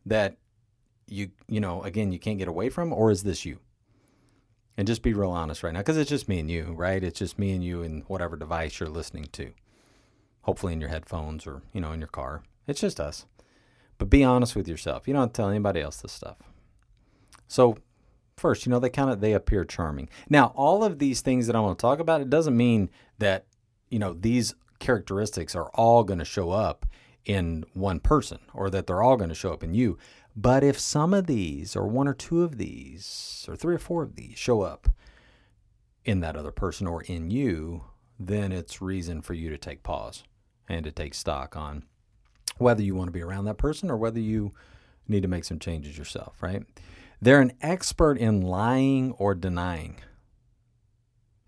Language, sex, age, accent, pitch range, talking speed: English, male, 40-59, American, 90-120 Hz, 210 wpm